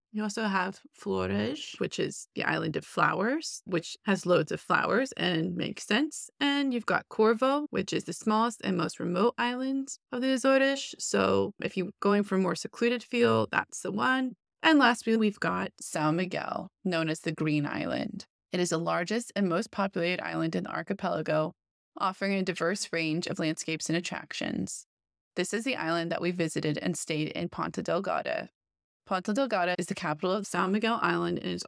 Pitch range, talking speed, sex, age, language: 165-220 Hz, 185 wpm, female, 20-39, English